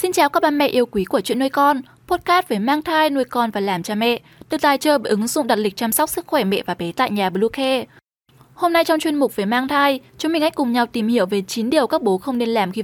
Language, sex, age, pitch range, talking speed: Vietnamese, female, 10-29, 220-305 Hz, 295 wpm